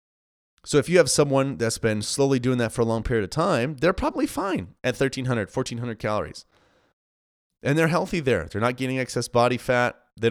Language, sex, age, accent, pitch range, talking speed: English, male, 30-49, American, 105-130 Hz, 200 wpm